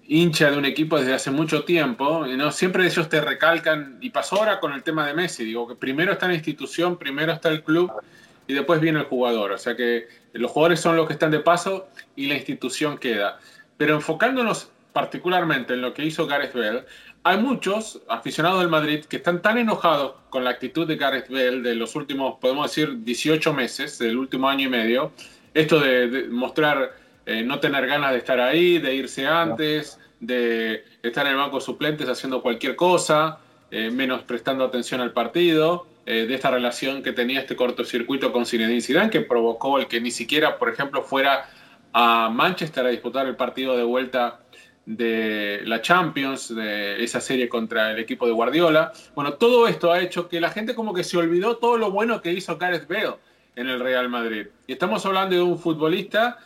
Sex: male